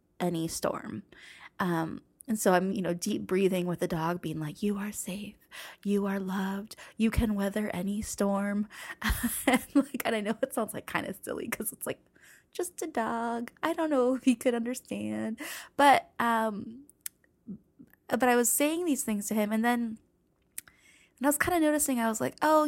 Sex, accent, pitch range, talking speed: female, American, 180-245 Hz, 190 wpm